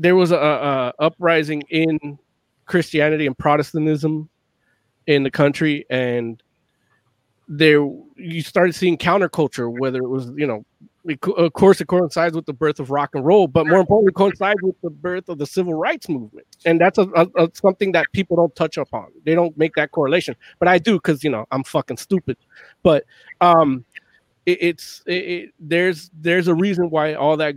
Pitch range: 145-175 Hz